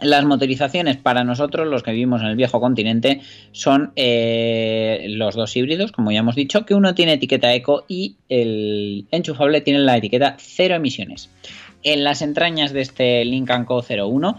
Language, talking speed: Spanish, 170 wpm